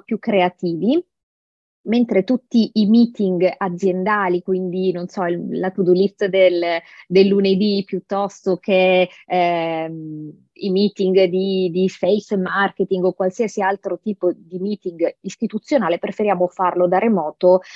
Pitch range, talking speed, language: 185-210 Hz, 120 wpm, Italian